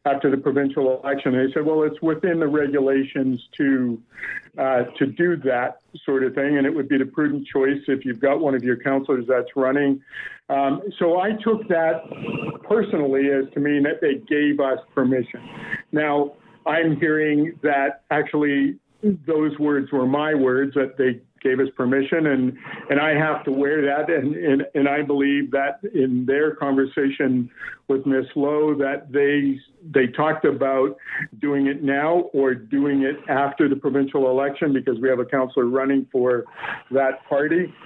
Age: 50-69